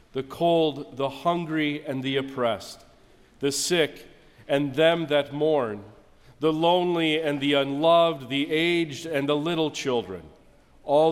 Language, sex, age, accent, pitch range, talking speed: English, male, 40-59, American, 135-155 Hz, 135 wpm